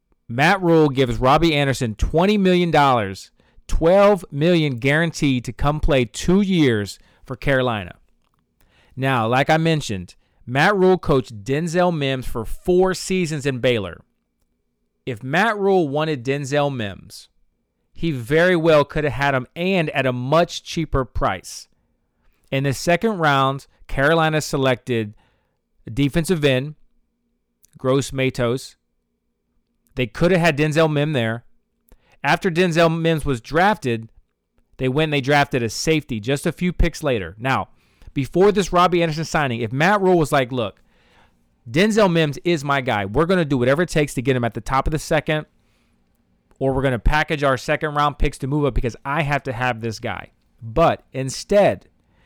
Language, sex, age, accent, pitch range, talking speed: English, male, 40-59, American, 125-165 Hz, 160 wpm